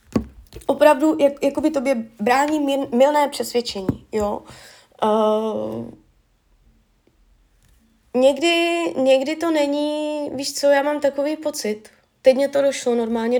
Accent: native